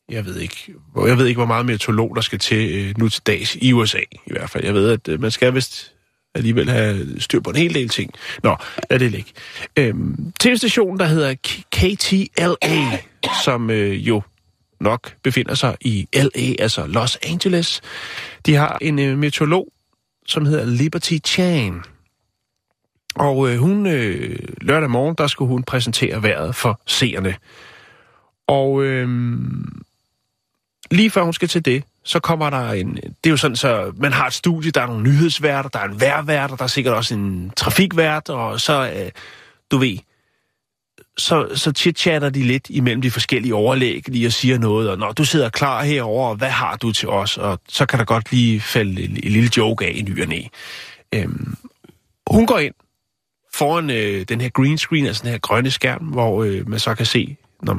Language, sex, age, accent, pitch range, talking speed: Danish, male, 30-49, native, 110-150 Hz, 180 wpm